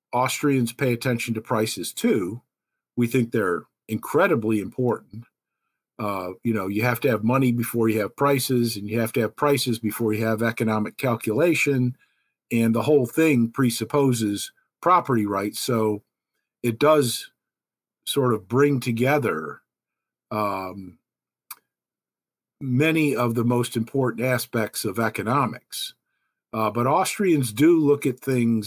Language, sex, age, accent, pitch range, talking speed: English, male, 50-69, American, 110-135 Hz, 135 wpm